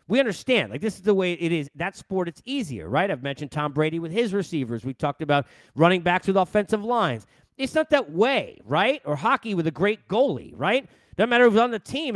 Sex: male